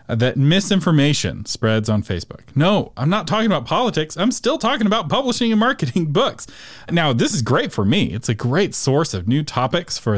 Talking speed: 195 wpm